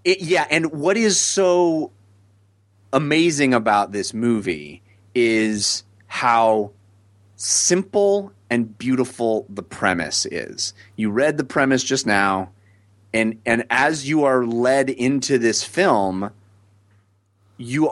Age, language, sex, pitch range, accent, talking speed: 30-49, English, male, 100-155 Hz, American, 115 wpm